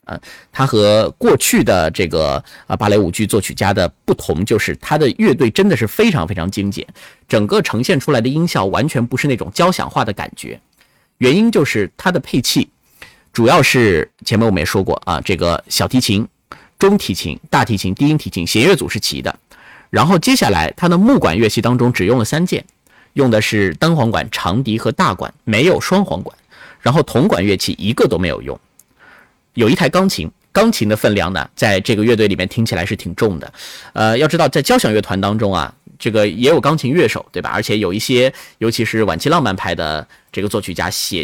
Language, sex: Chinese, male